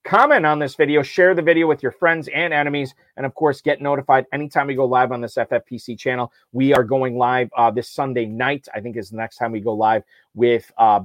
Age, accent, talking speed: 30-49, American, 240 wpm